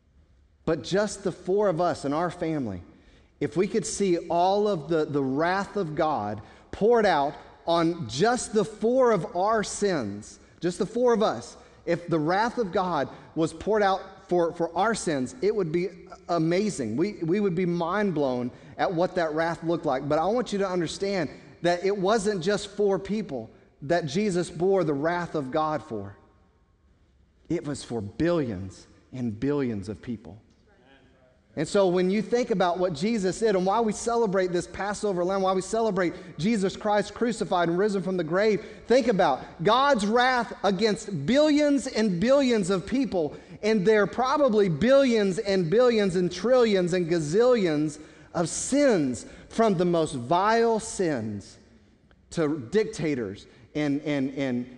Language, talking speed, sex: English, 165 wpm, male